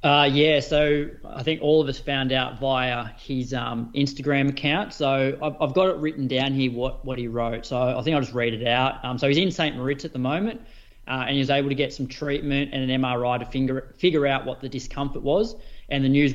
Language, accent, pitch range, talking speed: English, Australian, 125-145 Hz, 245 wpm